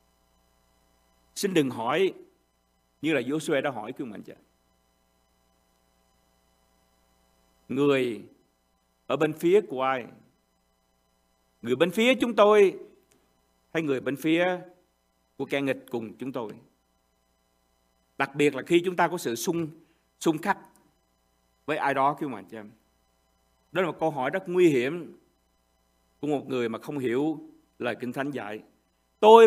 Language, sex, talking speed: Vietnamese, male, 125 wpm